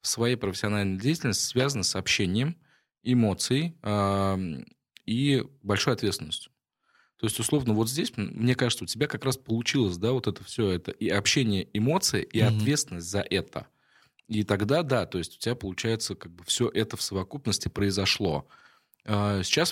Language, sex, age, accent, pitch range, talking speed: Russian, male, 20-39, native, 95-125 Hz, 155 wpm